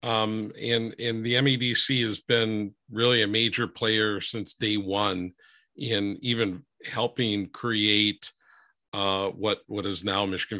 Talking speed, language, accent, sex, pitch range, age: 135 wpm, English, American, male, 105-130 Hz, 50-69